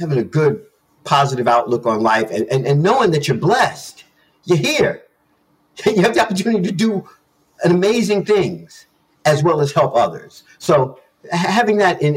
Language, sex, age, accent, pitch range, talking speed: English, male, 50-69, American, 130-170 Hz, 170 wpm